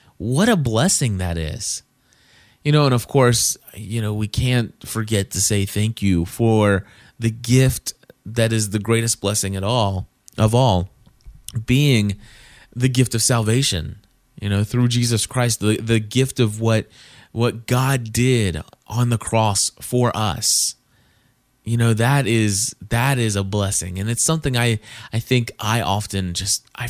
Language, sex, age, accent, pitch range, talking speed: English, male, 20-39, American, 105-125 Hz, 160 wpm